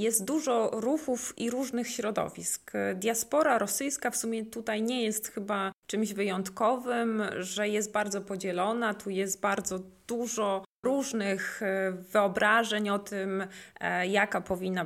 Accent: native